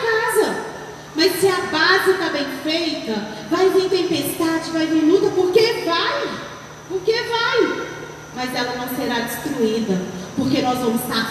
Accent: Brazilian